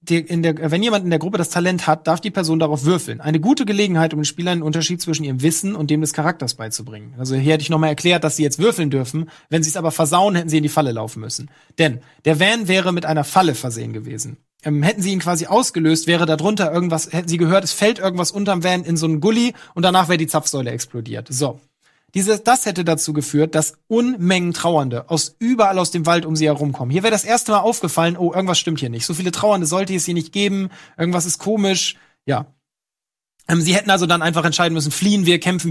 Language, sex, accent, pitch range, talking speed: German, male, German, 150-180 Hz, 240 wpm